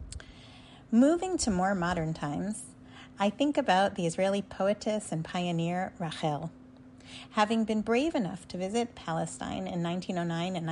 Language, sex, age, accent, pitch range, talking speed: English, female, 30-49, American, 165-210 Hz, 130 wpm